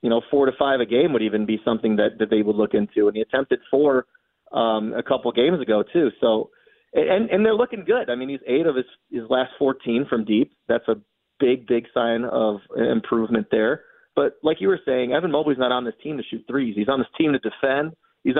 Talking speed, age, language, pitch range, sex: 240 wpm, 30-49, English, 110-130 Hz, male